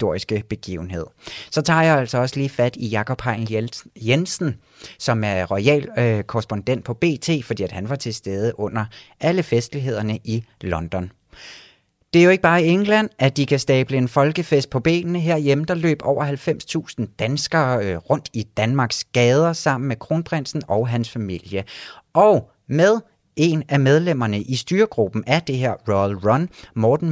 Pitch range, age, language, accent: 110-155 Hz, 30-49, Danish, native